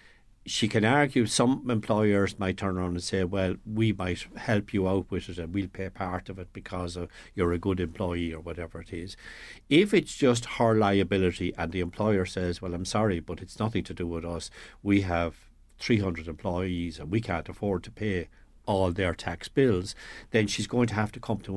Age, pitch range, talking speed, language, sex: 60-79, 90-115 Hz, 205 wpm, English, male